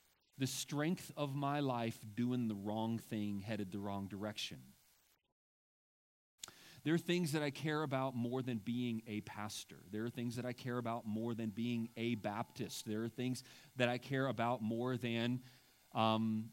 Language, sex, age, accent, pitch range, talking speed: English, male, 30-49, American, 110-125 Hz, 170 wpm